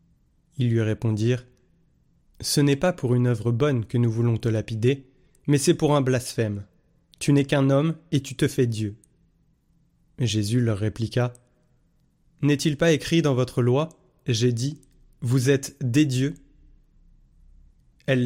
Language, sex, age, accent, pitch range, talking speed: French, male, 20-39, French, 120-145 Hz, 150 wpm